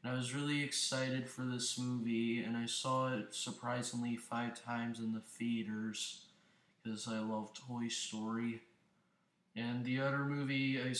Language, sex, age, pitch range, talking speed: English, male, 20-39, 115-130 Hz, 155 wpm